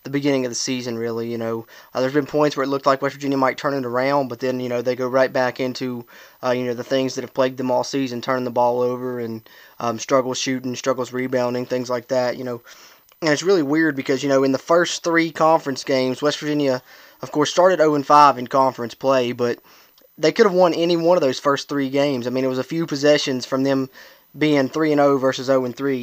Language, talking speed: English, 240 wpm